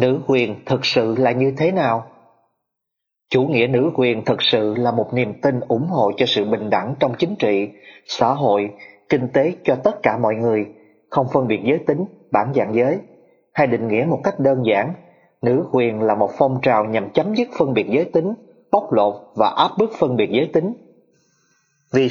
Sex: male